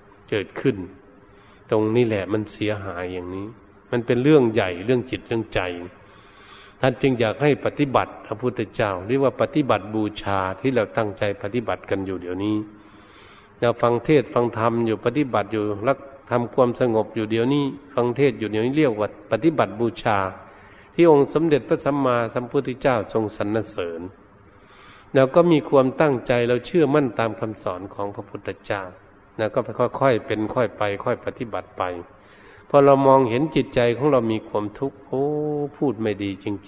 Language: Thai